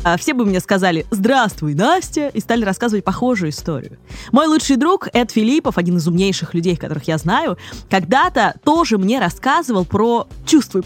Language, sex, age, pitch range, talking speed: Russian, female, 20-39, 170-260 Hz, 160 wpm